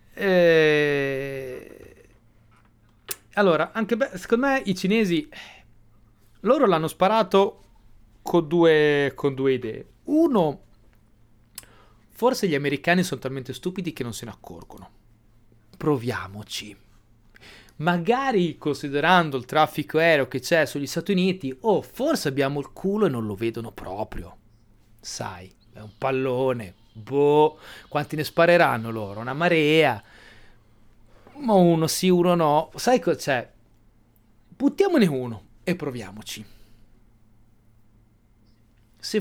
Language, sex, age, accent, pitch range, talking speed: Italian, male, 30-49, native, 110-160 Hz, 115 wpm